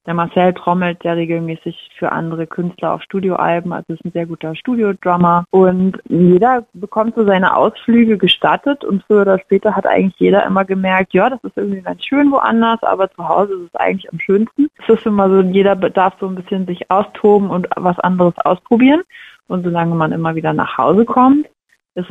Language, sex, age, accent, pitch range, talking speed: German, female, 20-39, German, 170-200 Hz, 195 wpm